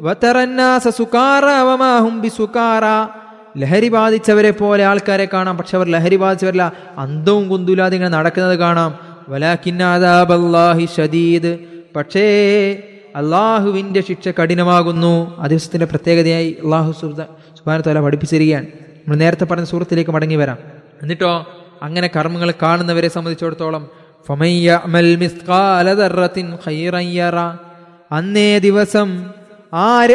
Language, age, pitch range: Malayalam, 20-39, 160-190 Hz